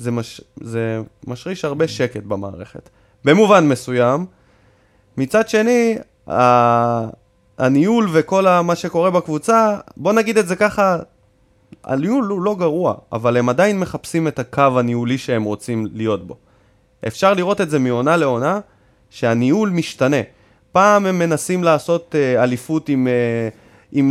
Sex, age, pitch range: male, 20-39, 120-190 Hz